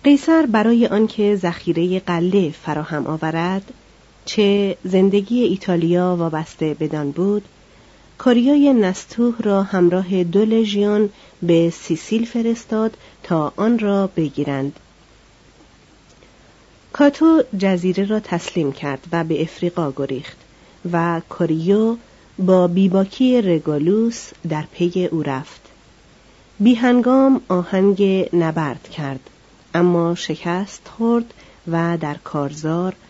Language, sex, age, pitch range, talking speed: Persian, female, 40-59, 165-220 Hz, 100 wpm